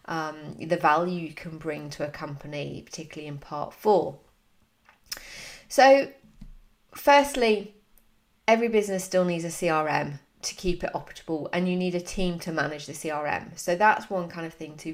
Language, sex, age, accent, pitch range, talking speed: English, female, 30-49, British, 160-200 Hz, 165 wpm